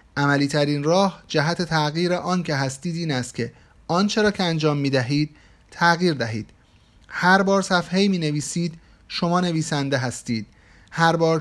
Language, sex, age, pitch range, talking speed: Persian, male, 30-49, 135-185 Hz, 145 wpm